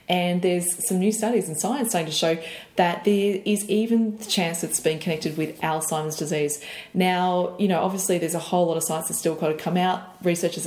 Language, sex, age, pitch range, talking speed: English, female, 20-39, 165-215 Hz, 220 wpm